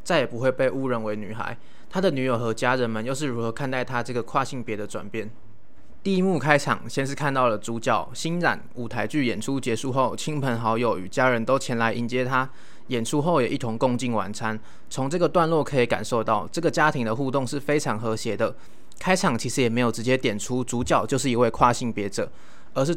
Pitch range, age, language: 115-145 Hz, 20-39, Chinese